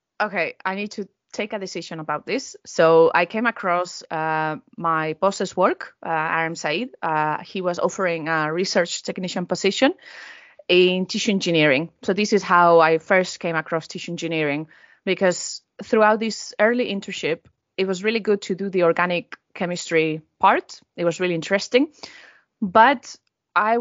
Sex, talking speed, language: female, 155 wpm, English